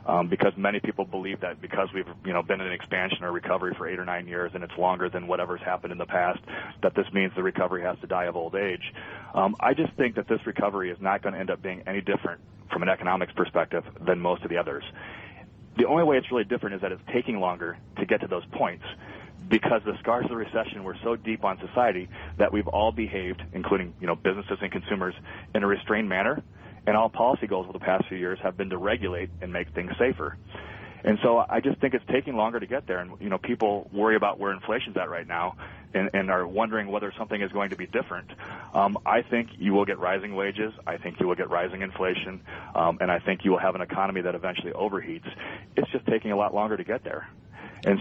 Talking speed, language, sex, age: 240 wpm, English, male, 30-49